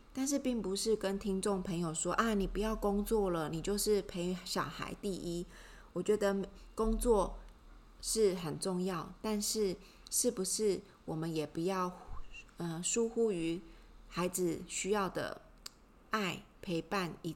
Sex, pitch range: female, 170-205 Hz